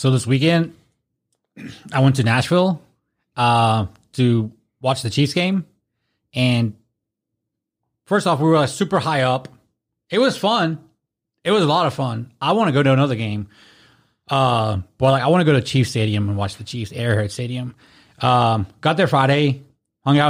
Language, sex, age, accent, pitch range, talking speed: English, male, 20-39, American, 115-150 Hz, 175 wpm